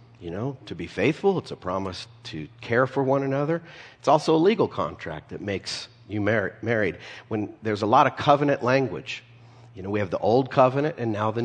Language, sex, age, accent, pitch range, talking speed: English, male, 50-69, American, 110-130 Hz, 200 wpm